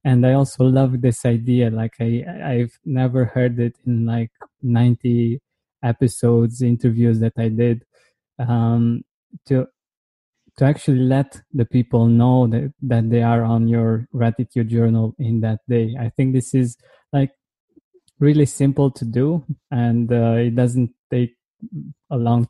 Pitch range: 120-135 Hz